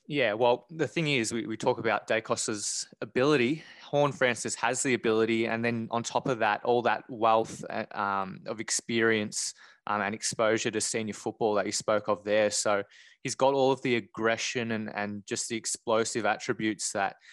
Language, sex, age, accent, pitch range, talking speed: English, male, 20-39, Australian, 105-115 Hz, 185 wpm